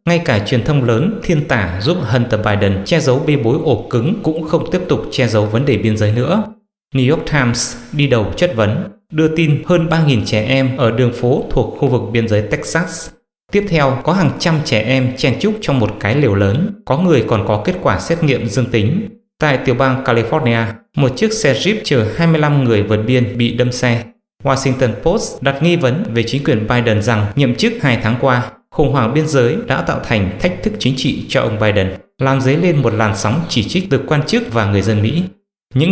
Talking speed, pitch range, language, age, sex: 225 wpm, 115-160 Hz, English, 20-39, male